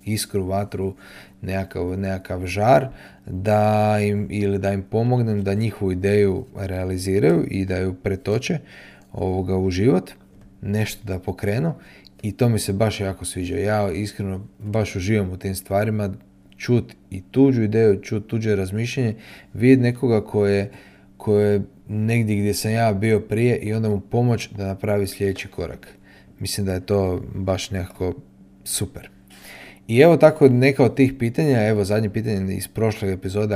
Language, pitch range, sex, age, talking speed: Croatian, 95-110 Hz, male, 30-49, 150 wpm